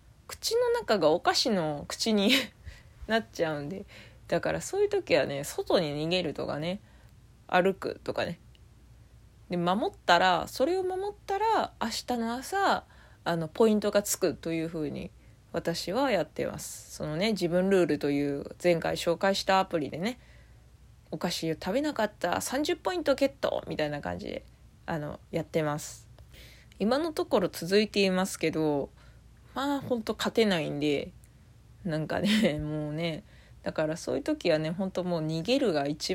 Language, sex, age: Japanese, female, 20-39